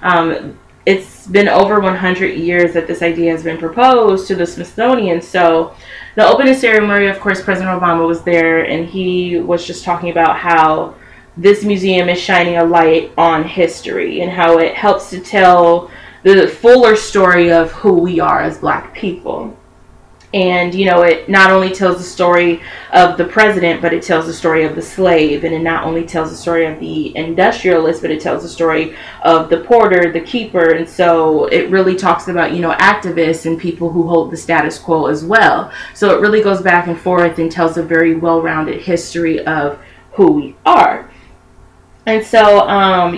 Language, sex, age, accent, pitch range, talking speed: English, female, 20-39, American, 165-185 Hz, 185 wpm